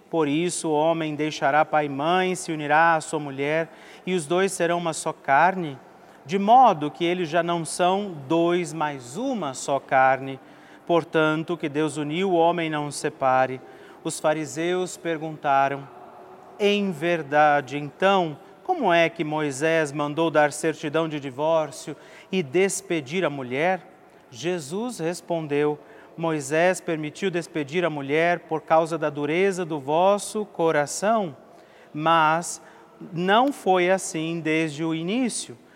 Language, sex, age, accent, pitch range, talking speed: Portuguese, male, 40-59, Brazilian, 150-180 Hz, 135 wpm